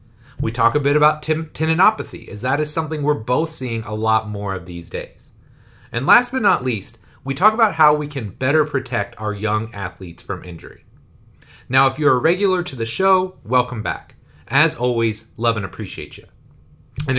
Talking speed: 190 wpm